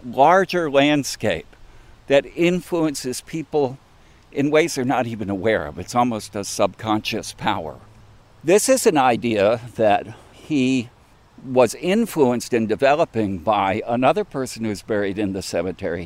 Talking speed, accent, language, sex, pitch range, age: 130 wpm, American, English, male, 105-140 Hz, 60-79